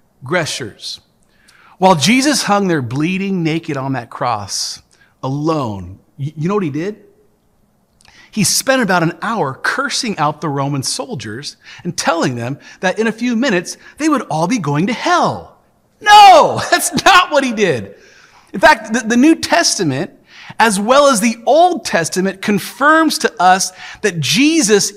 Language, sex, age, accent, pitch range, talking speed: English, male, 40-59, American, 165-275 Hz, 155 wpm